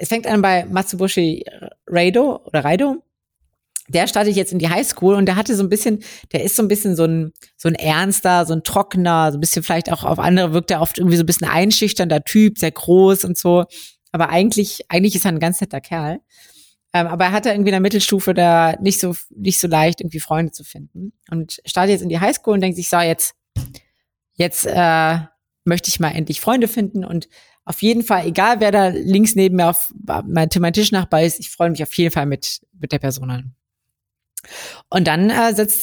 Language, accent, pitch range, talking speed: German, German, 160-200 Hz, 215 wpm